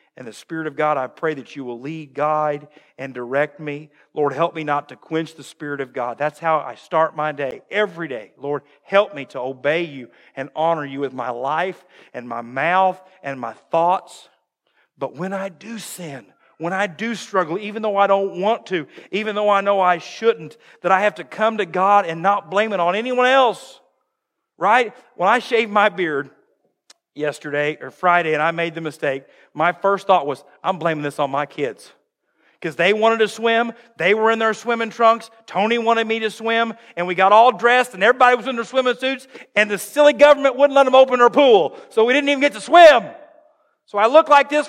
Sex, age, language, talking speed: male, 50-69, English, 215 wpm